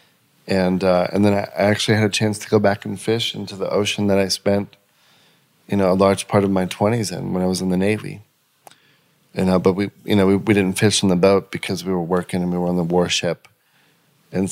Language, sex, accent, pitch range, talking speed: English, male, American, 90-100 Hz, 245 wpm